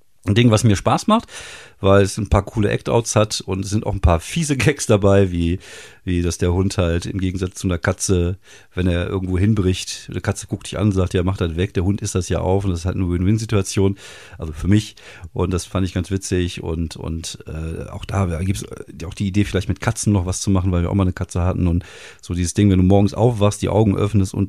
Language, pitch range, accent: German, 90-105 Hz, German